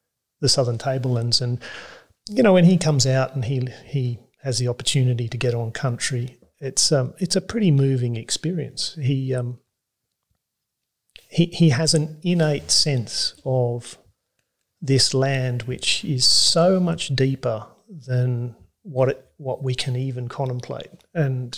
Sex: male